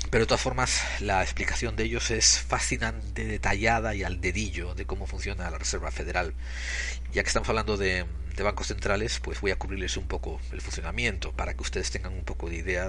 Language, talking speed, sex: Spanish, 205 wpm, male